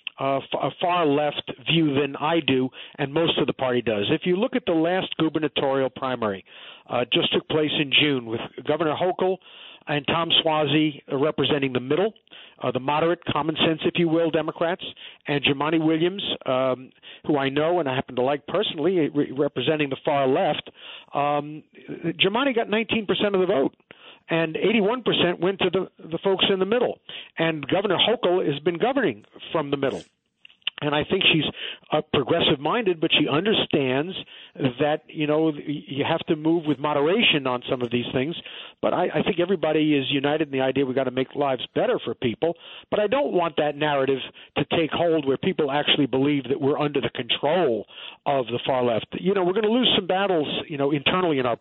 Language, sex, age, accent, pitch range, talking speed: English, male, 50-69, American, 140-175 Hz, 195 wpm